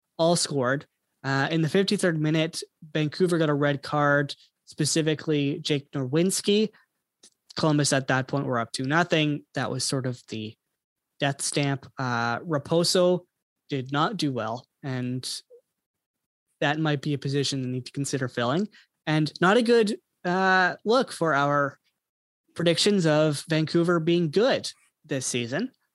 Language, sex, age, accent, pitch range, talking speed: English, male, 20-39, American, 145-185 Hz, 145 wpm